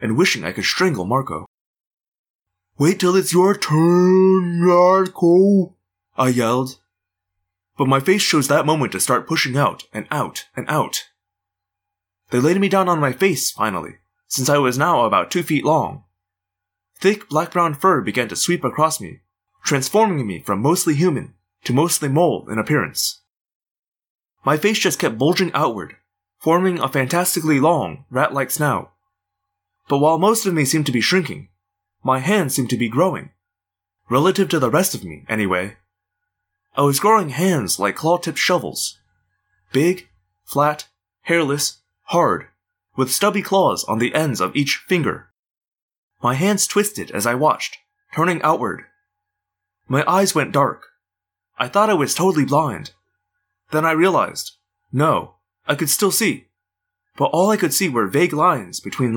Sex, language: male, English